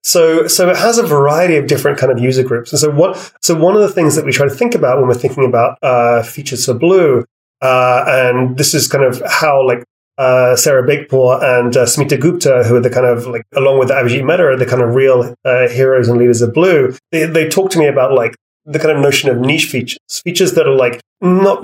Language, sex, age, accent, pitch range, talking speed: English, male, 30-49, British, 120-155 Hz, 245 wpm